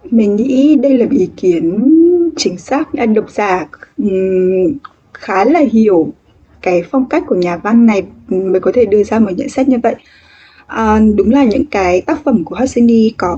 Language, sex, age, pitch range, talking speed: English, female, 10-29, 185-275 Hz, 195 wpm